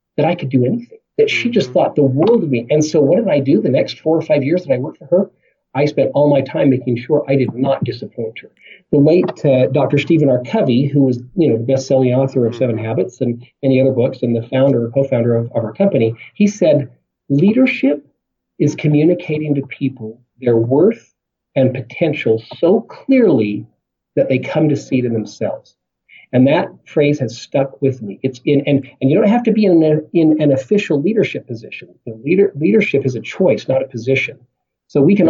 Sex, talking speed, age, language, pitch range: male, 215 wpm, 40-59, English, 125-155 Hz